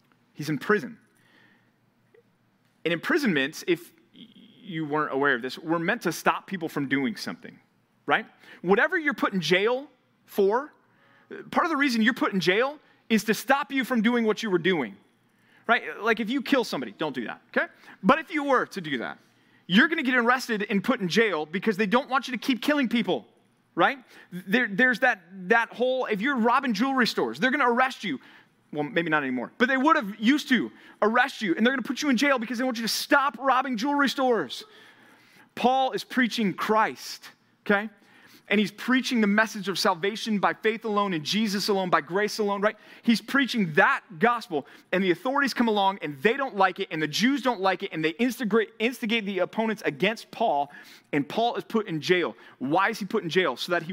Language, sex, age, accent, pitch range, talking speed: English, male, 30-49, American, 190-255 Hz, 205 wpm